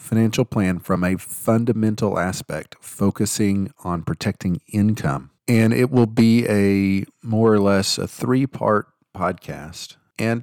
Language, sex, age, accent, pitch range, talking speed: English, male, 40-59, American, 95-115 Hz, 130 wpm